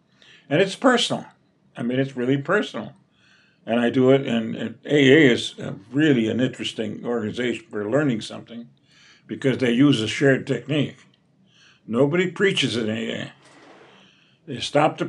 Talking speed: 145 wpm